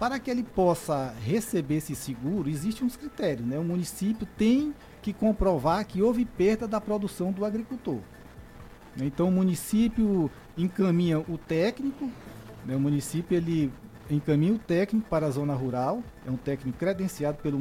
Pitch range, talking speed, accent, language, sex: 145-210 Hz, 155 wpm, Brazilian, Portuguese, male